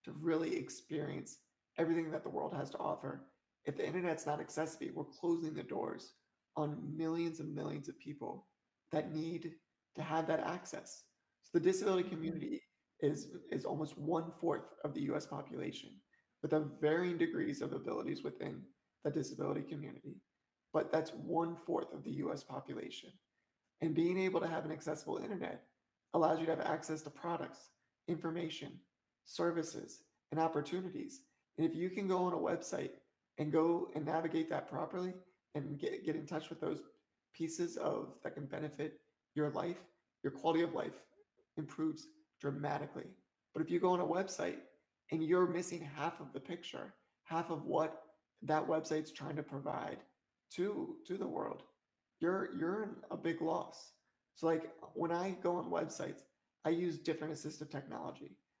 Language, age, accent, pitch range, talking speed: English, 20-39, American, 155-175 Hz, 160 wpm